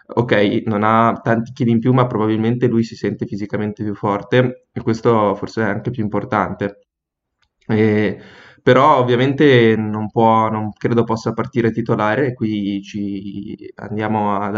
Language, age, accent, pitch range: Italian, 20-39, native, 105-115 Hz